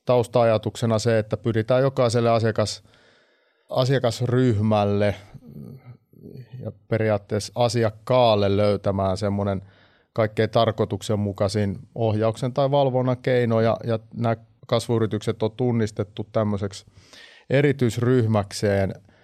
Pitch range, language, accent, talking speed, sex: 105-120 Hz, Finnish, native, 80 wpm, male